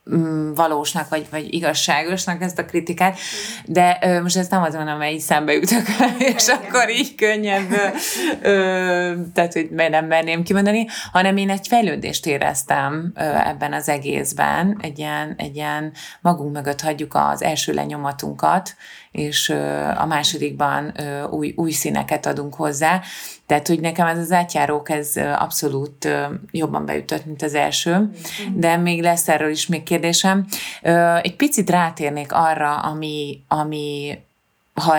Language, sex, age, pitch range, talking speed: Hungarian, female, 30-49, 150-175 Hz, 135 wpm